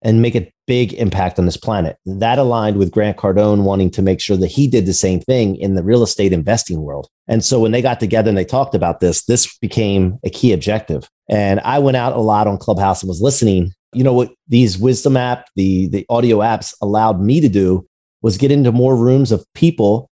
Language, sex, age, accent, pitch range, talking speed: English, male, 30-49, American, 105-135 Hz, 230 wpm